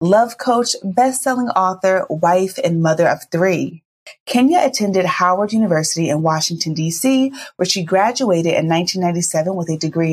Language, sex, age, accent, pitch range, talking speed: English, female, 30-49, American, 165-220 Hz, 140 wpm